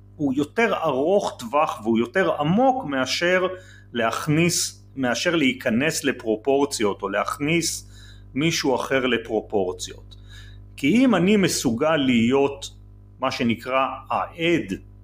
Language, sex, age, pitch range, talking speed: Hebrew, male, 40-59, 100-170 Hz, 100 wpm